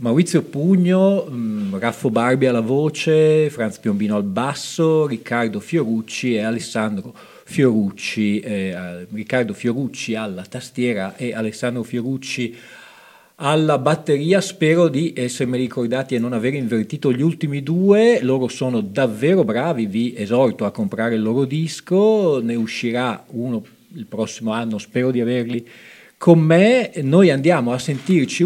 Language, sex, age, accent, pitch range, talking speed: Italian, male, 40-59, native, 115-165 Hz, 130 wpm